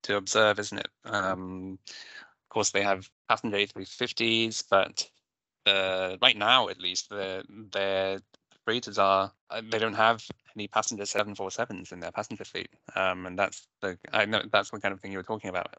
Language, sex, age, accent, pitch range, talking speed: English, male, 10-29, British, 95-105 Hz, 175 wpm